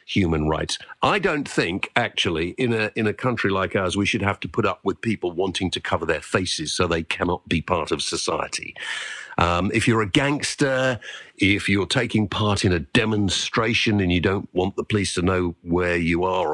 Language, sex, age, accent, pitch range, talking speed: English, male, 50-69, British, 90-120 Hz, 205 wpm